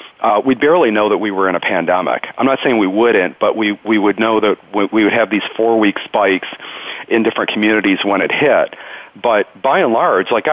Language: English